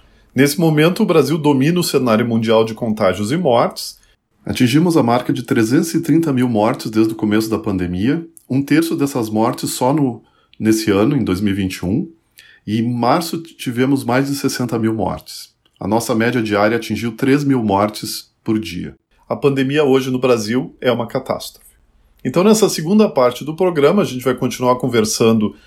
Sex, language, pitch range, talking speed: male, Portuguese, 105-145 Hz, 170 wpm